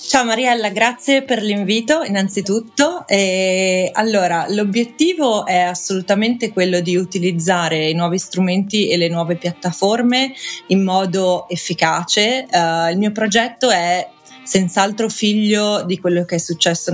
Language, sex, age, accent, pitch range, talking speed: Italian, female, 30-49, native, 170-200 Hz, 125 wpm